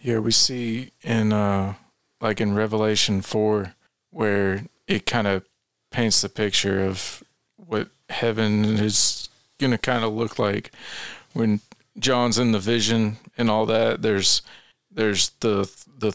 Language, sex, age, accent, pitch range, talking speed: English, male, 40-59, American, 105-115 Hz, 140 wpm